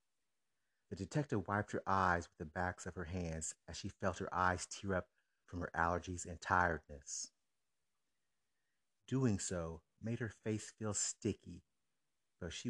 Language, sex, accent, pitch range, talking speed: English, male, American, 85-105 Hz, 150 wpm